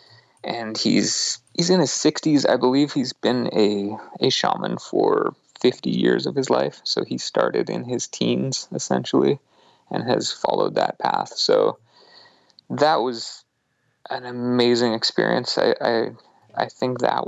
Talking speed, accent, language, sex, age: 145 wpm, American, English, male, 30-49